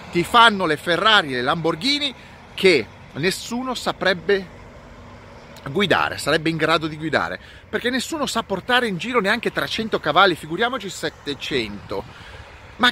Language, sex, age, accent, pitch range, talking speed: Italian, male, 30-49, native, 135-215 Hz, 125 wpm